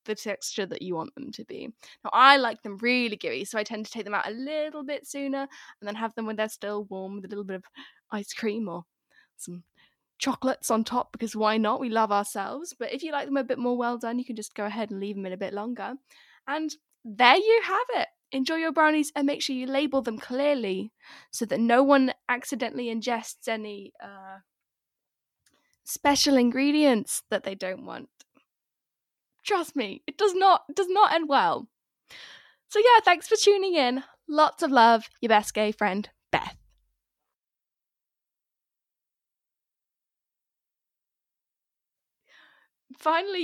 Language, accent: English, British